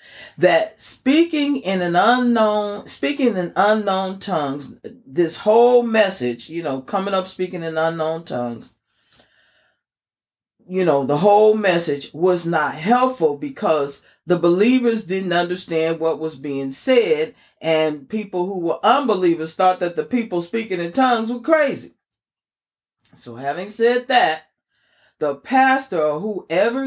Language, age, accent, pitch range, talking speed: English, 40-59, American, 165-240 Hz, 130 wpm